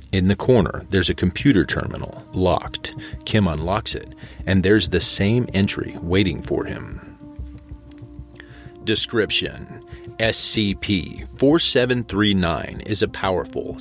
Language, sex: English, male